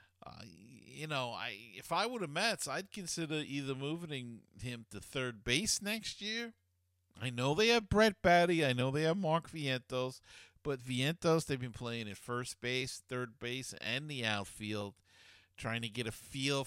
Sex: male